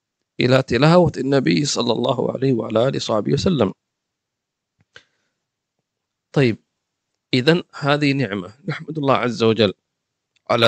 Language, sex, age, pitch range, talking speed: English, male, 50-69, 130-175 Hz, 105 wpm